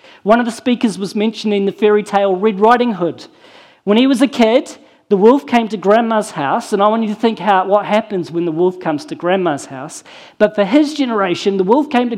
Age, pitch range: 40-59, 200-250 Hz